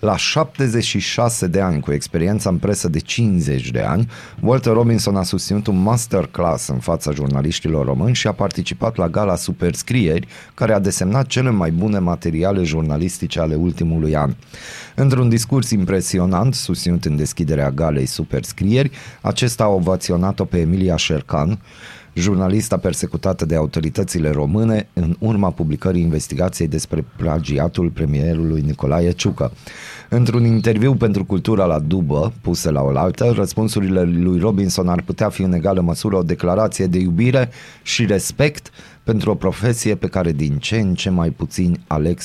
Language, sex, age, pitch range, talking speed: Romanian, male, 30-49, 85-110 Hz, 145 wpm